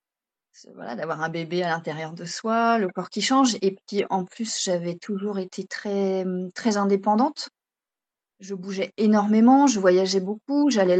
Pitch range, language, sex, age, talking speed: 180-225 Hz, French, female, 30-49, 160 wpm